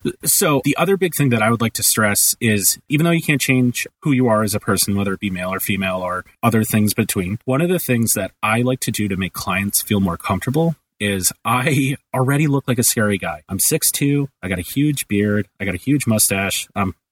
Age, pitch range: 30-49, 100-130 Hz